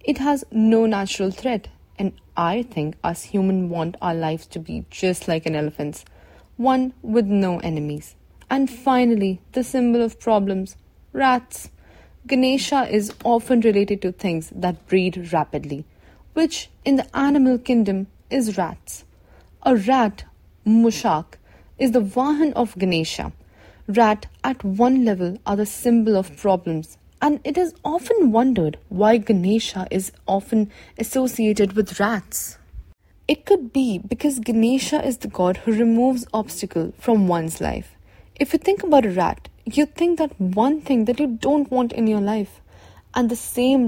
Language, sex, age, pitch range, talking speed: English, female, 30-49, 180-250 Hz, 150 wpm